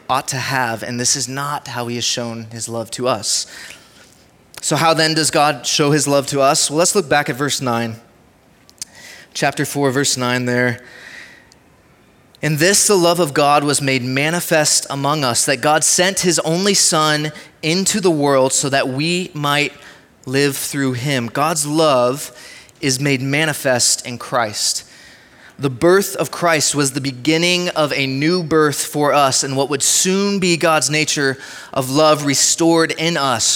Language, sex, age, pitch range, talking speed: English, male, 20-39, 130-160 Hz, 170 wpm